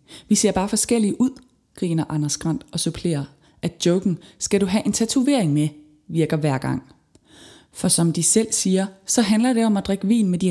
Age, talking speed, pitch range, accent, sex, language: 20-39, 200 wpm, 165-220 Hz, native, female, Danish